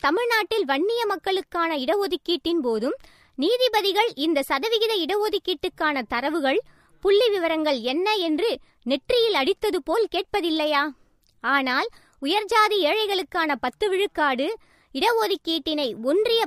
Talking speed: 90 wpm